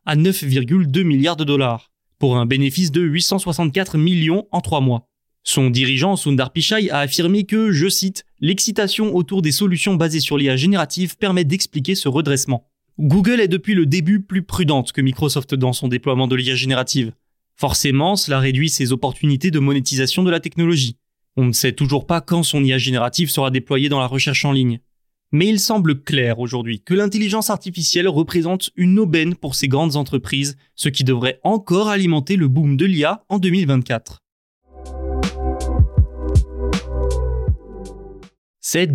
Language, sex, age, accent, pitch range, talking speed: French, male, 20-39, French, 135-180 Hz, 160 wpm